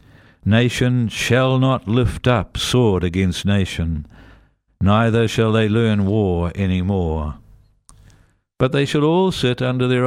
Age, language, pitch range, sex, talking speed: 60-79, English, 90-115 Hz, male, 130 wpm